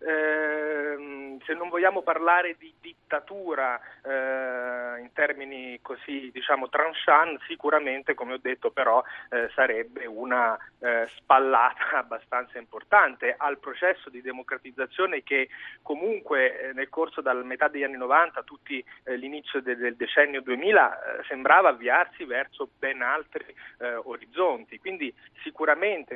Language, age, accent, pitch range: Italian, 30-49, native, 130-185 Hz